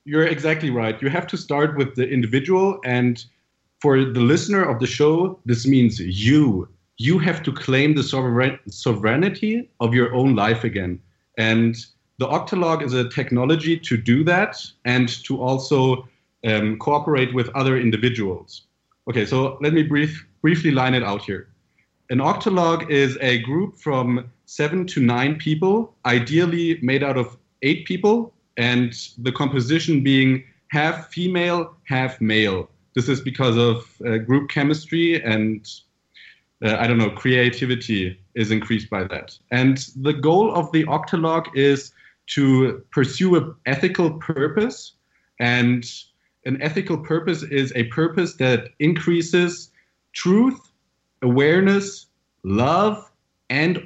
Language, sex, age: English, male, 30-49